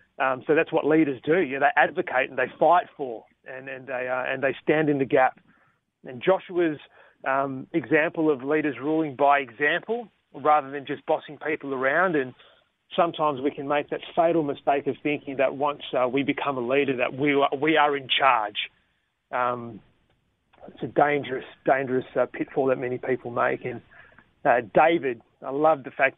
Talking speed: 185 wpm